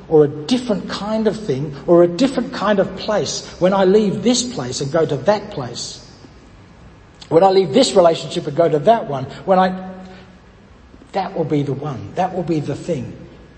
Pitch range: 150-205 Hz